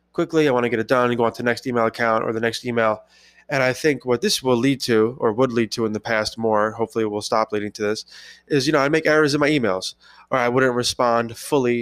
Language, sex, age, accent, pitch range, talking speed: English, male, 20-39, American, 115-135 Hz, 285 wpm